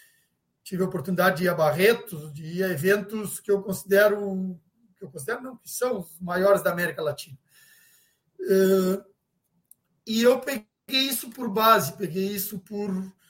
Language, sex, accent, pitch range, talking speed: Portuguese, male, Brazilian, 180-235 Hz, 140 wpm